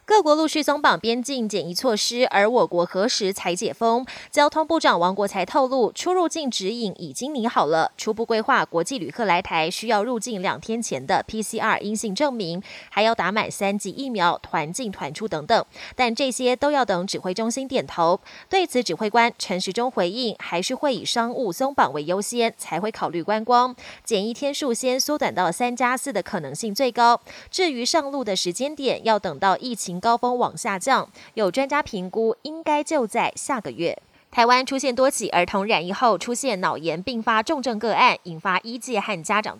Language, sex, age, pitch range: Chinese, female, 20-39, 195-260 Hz